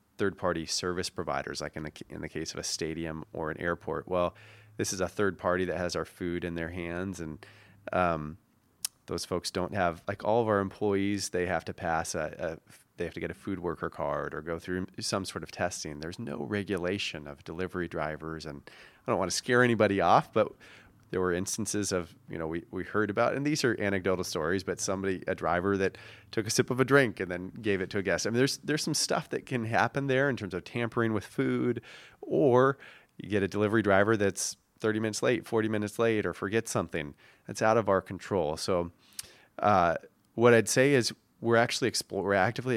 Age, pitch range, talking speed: 30-49, 90-115 Hz, 220 wpm